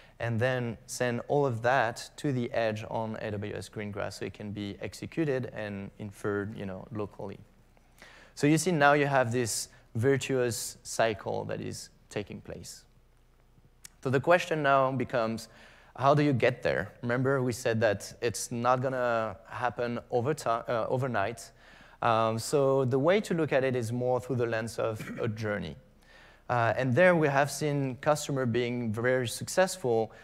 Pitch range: 110-135 Hz